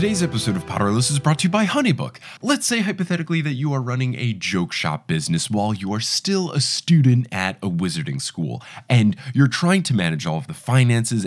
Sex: male